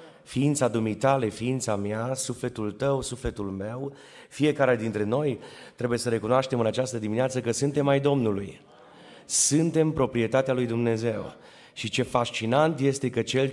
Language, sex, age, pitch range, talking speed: Romanian, male, 30-49, 105-125 Hz, 140 wpm